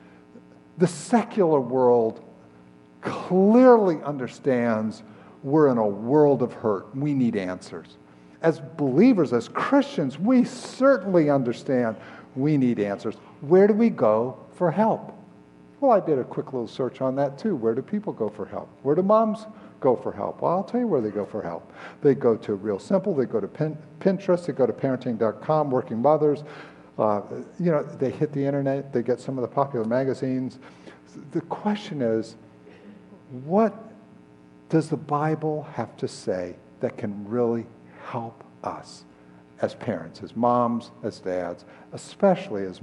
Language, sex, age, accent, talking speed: English, male, 50-69, American, 160 wpm